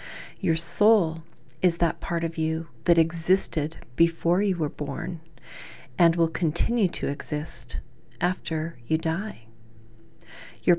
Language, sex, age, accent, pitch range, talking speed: English, female, 40-59, American, 165-195 Hz, 120 wpm